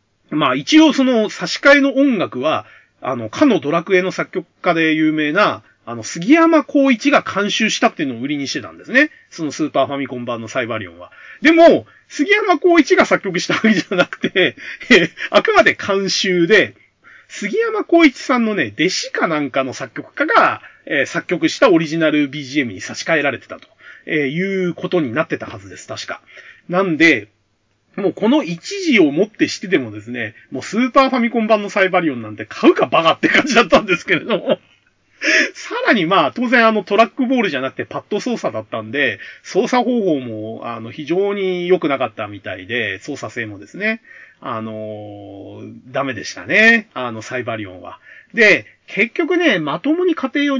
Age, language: 30-49, Japanese